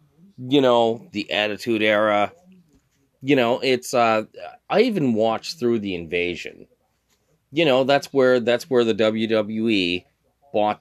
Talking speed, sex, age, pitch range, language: 135 wpm, male, 30-49, 115-155 Hz, English